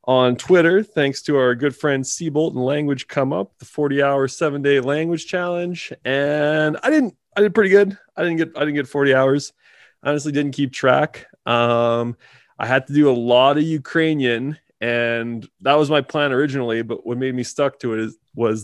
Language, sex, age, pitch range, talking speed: English, male, 20-39, 120-145 Hz, 195 wpm